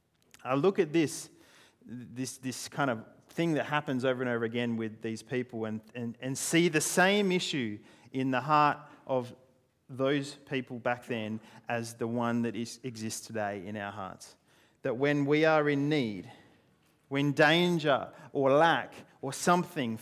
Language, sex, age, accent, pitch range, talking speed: English, male, 40-59, Australian, 120-155 Hz, 160 wpm